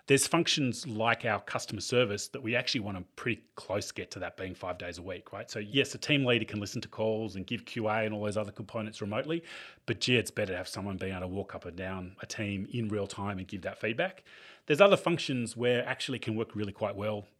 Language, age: English, 30-49